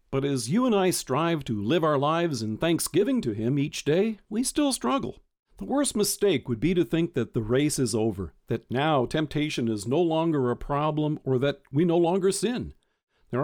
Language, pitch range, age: English, 125-175 Hz, 50-69